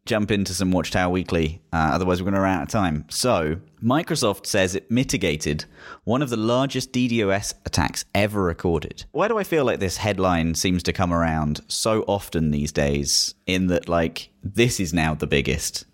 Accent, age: British, 30-49